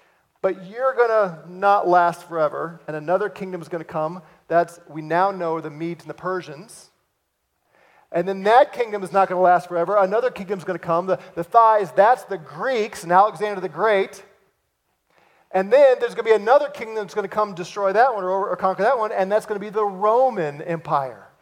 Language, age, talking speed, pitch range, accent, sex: English, 40-59, 195 wpm, 175-220 Hz, American, male